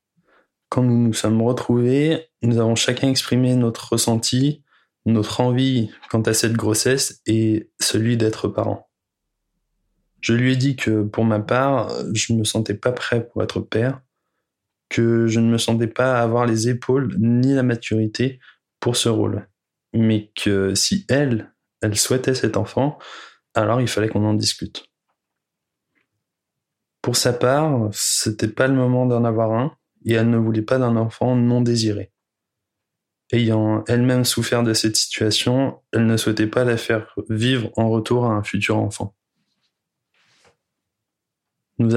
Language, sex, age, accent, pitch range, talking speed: French, male, 20-39, French, 110-125 Hz, 155 wpm